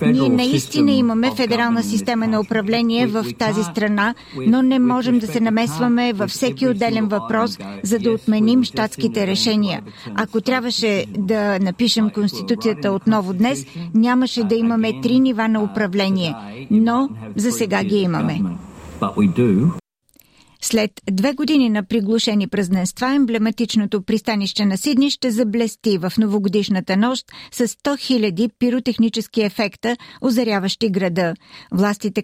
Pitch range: 205-235 Hz